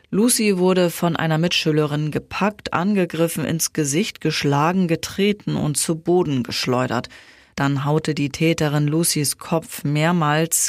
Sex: female